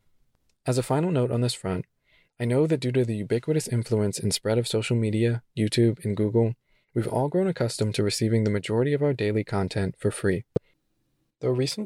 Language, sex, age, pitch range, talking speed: English, male, 20-39, 105-130 Hz, 195 wpm